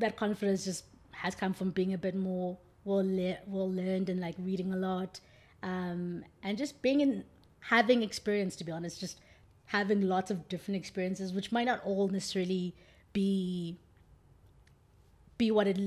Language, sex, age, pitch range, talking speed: English, female, 20-39, 185-215 Hz, 165 wpm